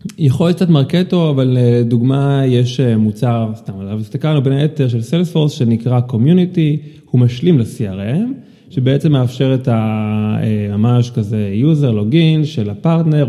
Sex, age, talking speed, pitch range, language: male, 30-49, 130 wpm, 110-140 Hz, Hebrew